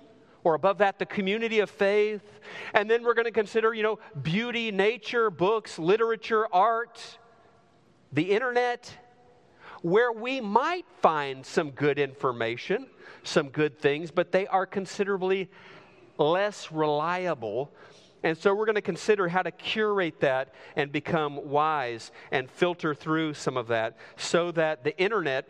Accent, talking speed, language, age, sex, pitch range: American, 145 wpm, English, 40-59, male, 160-220 Hz